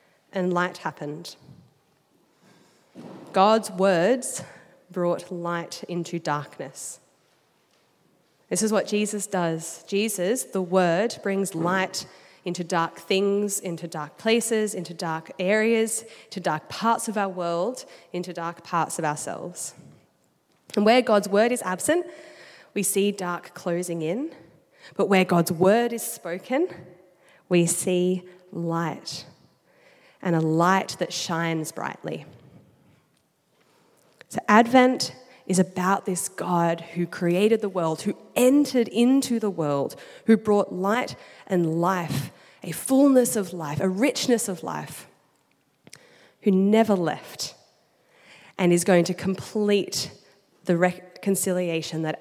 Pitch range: 170-215 Hz